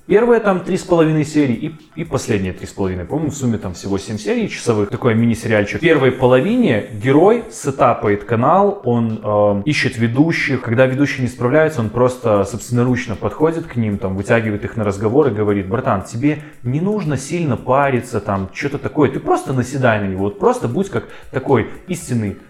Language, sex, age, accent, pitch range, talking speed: Russian, male, 20-39, native, 115-145 Hz, 185 wpm